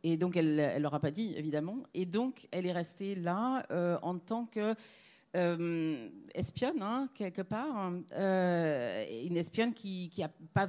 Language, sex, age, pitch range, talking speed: French, female, 40-59, 165-200 Hz, 170 wpm